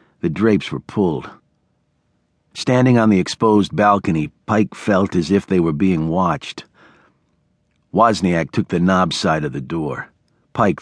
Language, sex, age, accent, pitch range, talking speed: English, male, 50-69, American, 95-115 Hz, 145 wpm